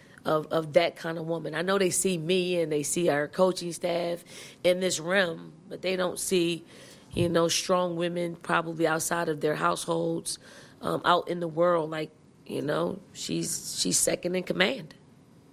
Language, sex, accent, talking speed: English, female, American, 180 wpm